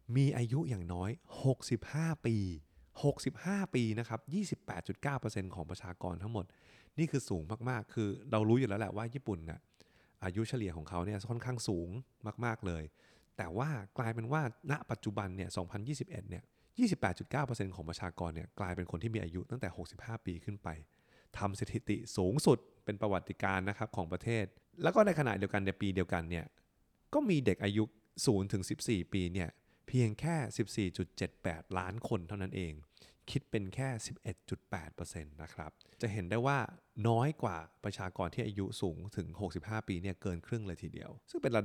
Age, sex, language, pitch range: 20-39, male, Thai, 90-120 Hz